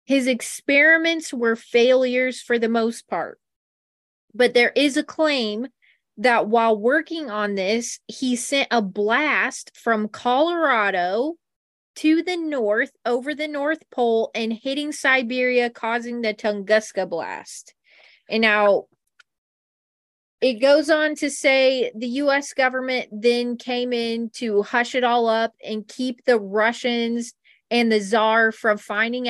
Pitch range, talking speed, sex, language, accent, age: 220-260 Hz, 135 wpm, female, English, American, 20-39